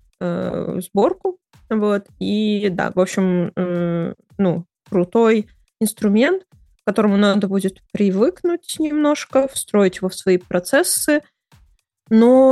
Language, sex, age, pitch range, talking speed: Russian, female, 20-39, 180-215 Hz, 95 wpm